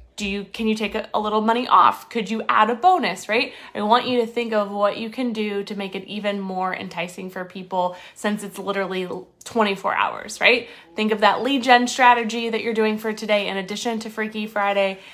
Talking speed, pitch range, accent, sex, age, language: 220 wpm, 200-235 Hz, American, female, 20-39, English